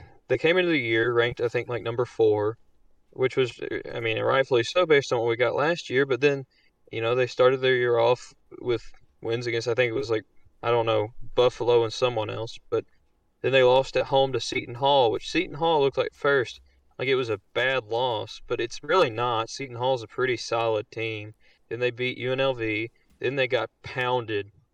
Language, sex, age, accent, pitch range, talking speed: English, male, 20-39, American, 110-135 Hz, 215 wpm